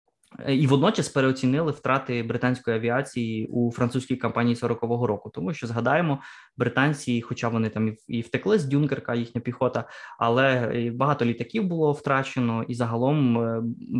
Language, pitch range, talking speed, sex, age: Ukrainian, 120-140 Hz, 135 wpm, male, 20-39